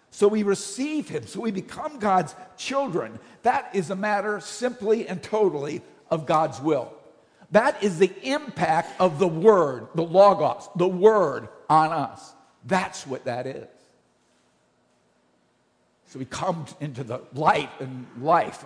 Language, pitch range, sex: English, 175-235 Hz, male